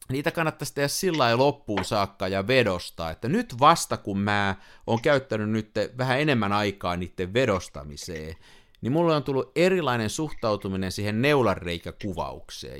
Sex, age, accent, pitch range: male, 50-69, native, 95-135 Hz